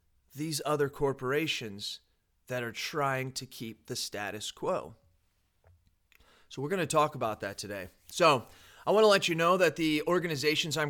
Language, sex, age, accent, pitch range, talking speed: English, male, 30-49, American, 115-155 Hz, 165 wpm